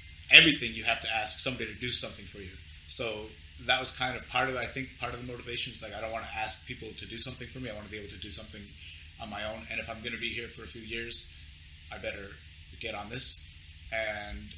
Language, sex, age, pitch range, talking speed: English, male, 30-49, 80-120 Hz, 270 wpm